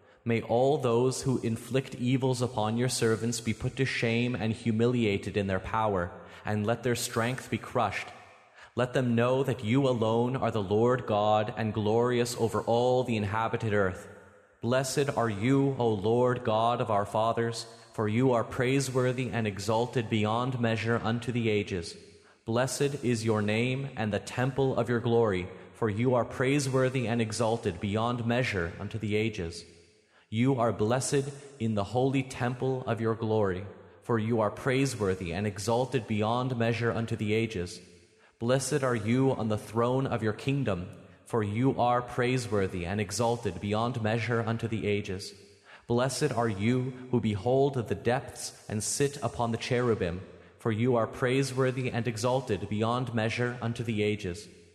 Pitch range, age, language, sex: 105-125 Hz, 30-49, English, male